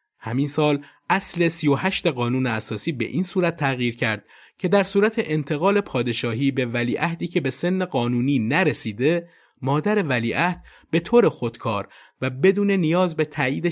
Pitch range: 115-170 Hz